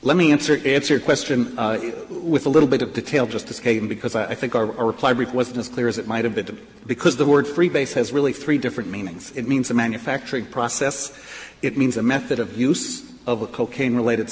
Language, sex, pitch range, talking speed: English, male, 115-145 Hz, 225 wpm